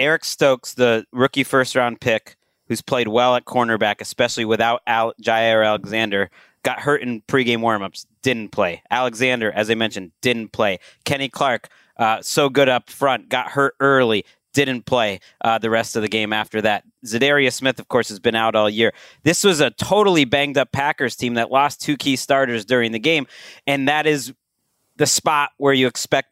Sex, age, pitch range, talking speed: male, 30-49, 115-145 Hz, 185 wpm